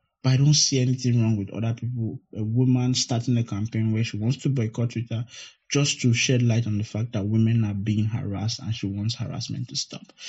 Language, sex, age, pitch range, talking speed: English, male, 20-39, 110-130 Hz, 220 wpm